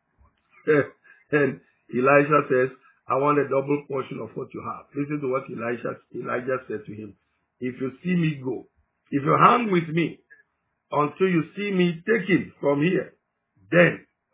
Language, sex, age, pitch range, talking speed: English, male, 50-69, 125-160 Hz, 160 wpm